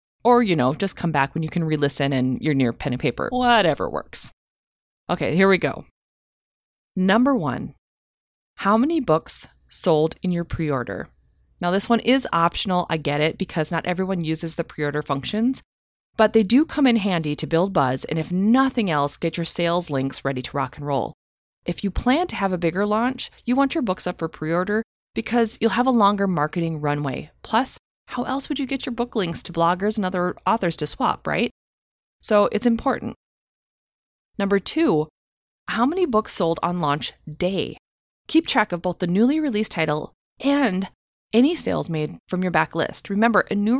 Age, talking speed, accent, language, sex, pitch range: 20-39, 190 wpm, American, English, female, 160-230 Hz